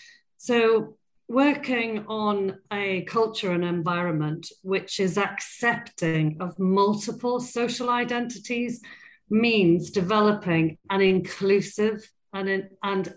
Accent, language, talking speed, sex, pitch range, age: British, English, 90 wpm, female, 180-230 Hz, 40-59